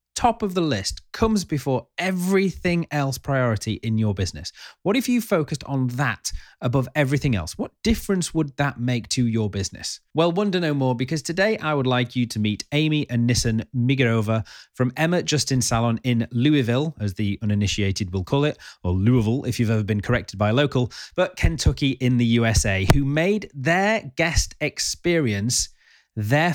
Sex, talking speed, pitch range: male, 175 wpm, 110-155 Hz